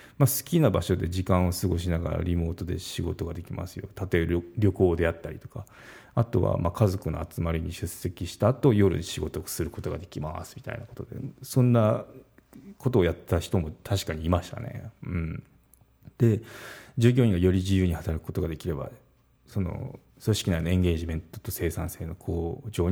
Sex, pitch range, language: male, 85-120 Hz, Japanese